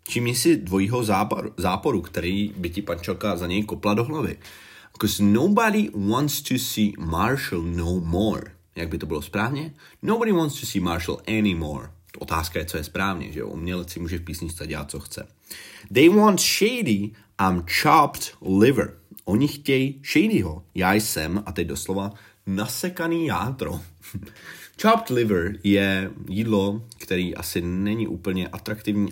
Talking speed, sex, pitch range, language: 155 wpm, male, 85-110 Hz, Czech